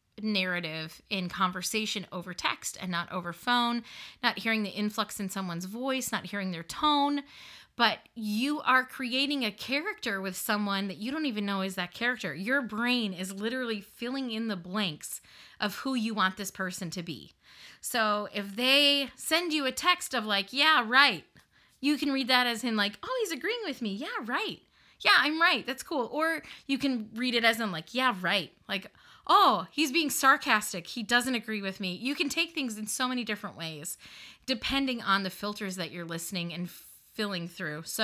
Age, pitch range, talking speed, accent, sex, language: 30-49, 195-265 Hz, 190 wpm, American, female, English